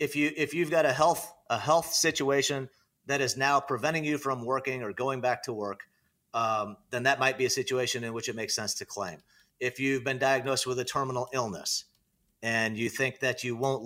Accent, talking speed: American, 215 wpm